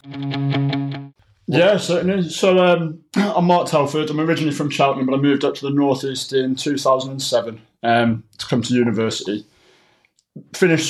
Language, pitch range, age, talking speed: English, 120-140 Hz, 20-39, 145 wpm